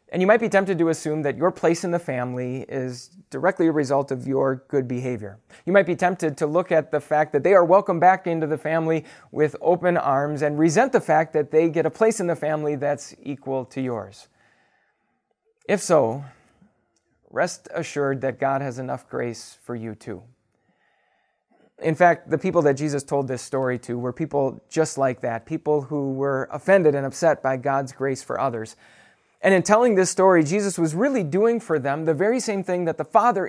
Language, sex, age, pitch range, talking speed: English, male, 30-49, 135-170 Hz, 200 wpm